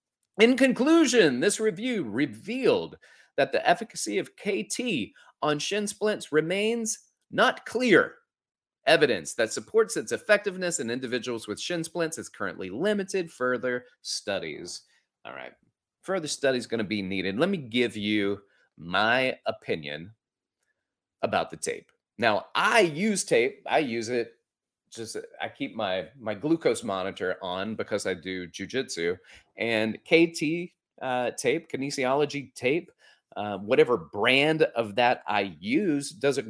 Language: English